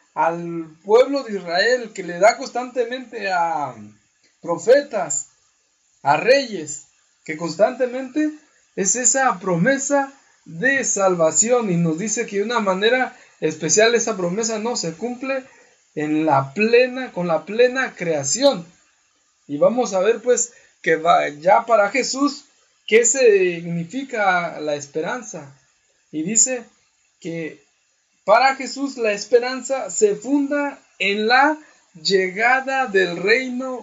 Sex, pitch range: male, 165-255 Hz